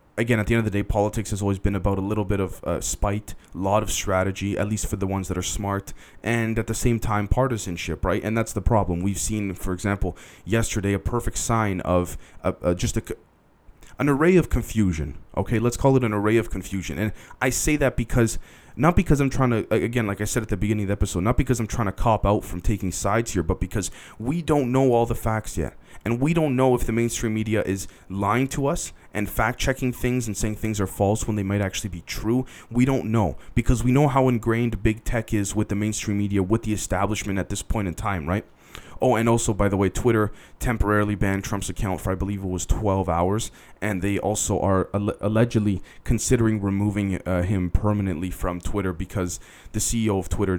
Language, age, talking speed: English, 20-39, 225 wpm